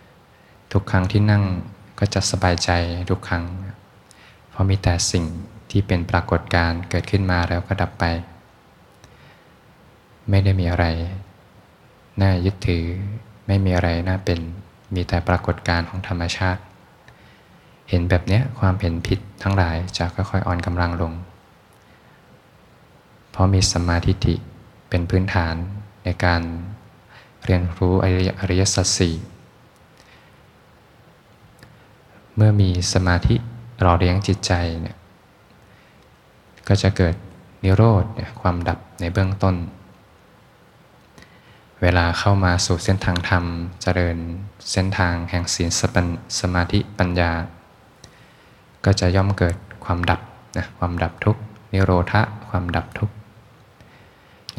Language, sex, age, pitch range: Thai, male, 20-39, 85-100 Hz